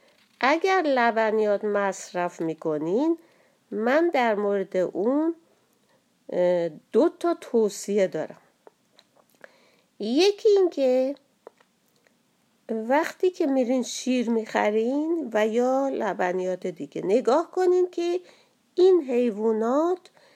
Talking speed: 85 wpm